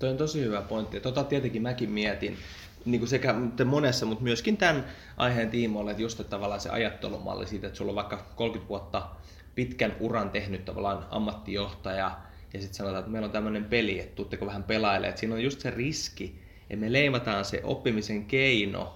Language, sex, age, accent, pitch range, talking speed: English, male, 20-39, Finnish, 100-125 Hz, 185 wpm